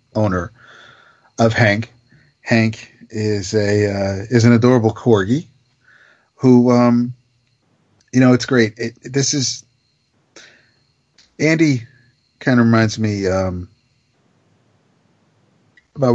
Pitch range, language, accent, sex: 105-130 Hz, English, American, male